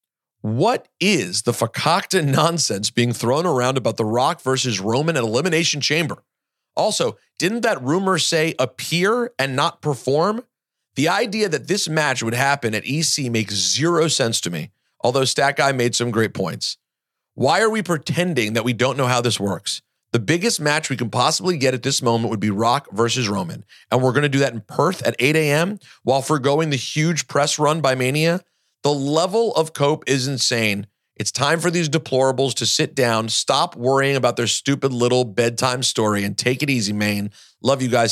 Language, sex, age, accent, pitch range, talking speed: English, male, 40-59, American, 115-150 Hz, 190 wpm